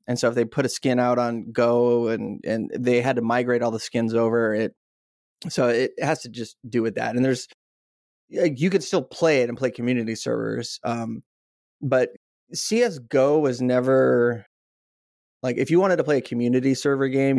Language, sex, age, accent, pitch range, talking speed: English, male, 20-39, American, 115-140 Hz, 195 wpm